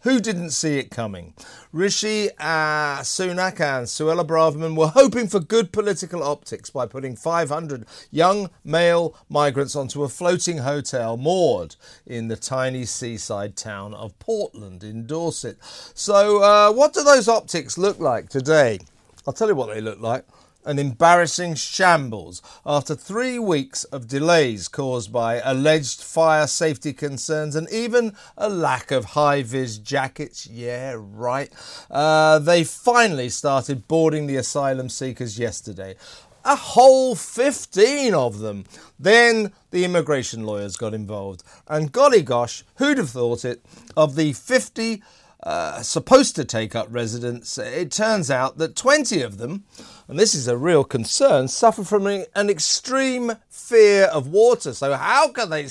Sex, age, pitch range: male, 40-59, 130-205 Hz